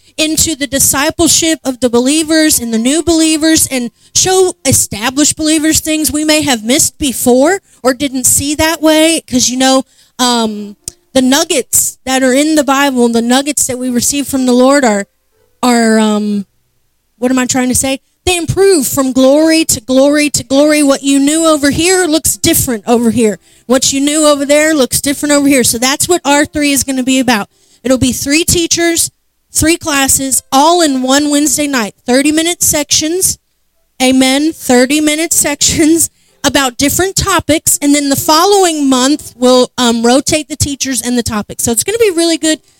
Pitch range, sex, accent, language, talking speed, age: 255-310 Hz, female, American, English, 180 wpm, 30-49